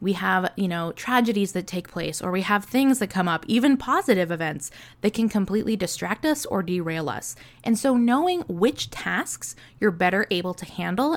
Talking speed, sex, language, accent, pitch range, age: 195 wpm, female, English, American, 180-240 Hz, 20-39